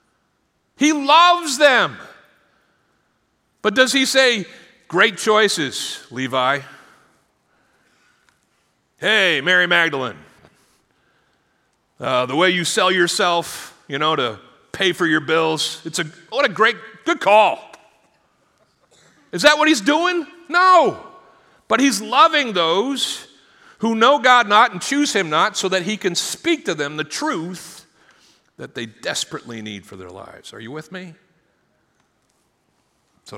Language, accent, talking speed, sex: English, American, 130 wpm, male